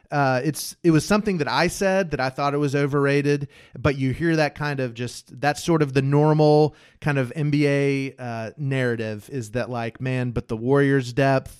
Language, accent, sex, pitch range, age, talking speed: English, American, male, 130-155 Hz, 30-49, 205 wpm